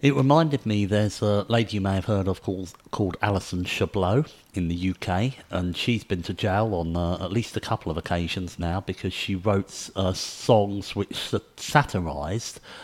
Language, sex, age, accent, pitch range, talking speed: English, male, 50-69, British, 90-105 Hz, 180 wpm